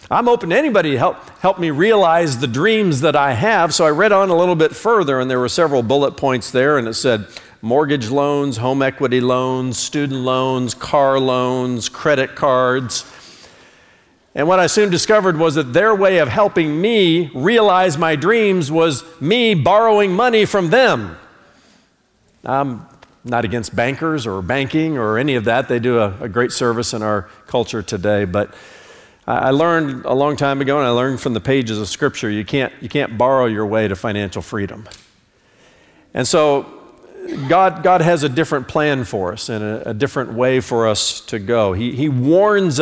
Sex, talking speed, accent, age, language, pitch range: male, 180 wpm, American, 50-69, English, 120-170 Hz